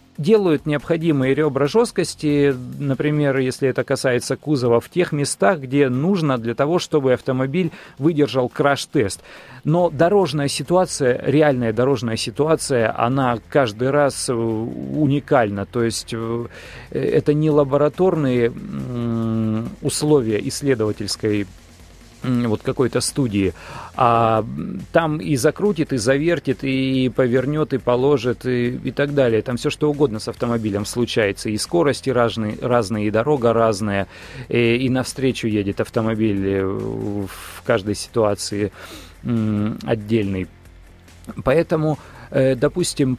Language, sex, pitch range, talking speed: Russian, male, 115-145 Hz, 105 wpm